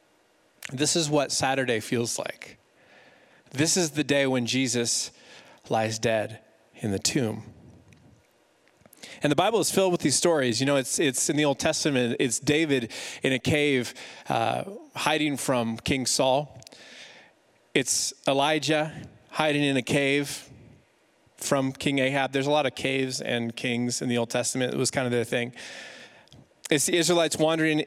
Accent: American